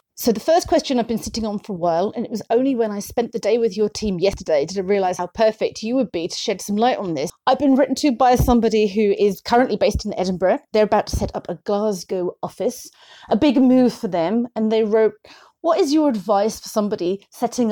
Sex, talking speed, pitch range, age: female, 245 wpm, 190-235 Hz, 30-49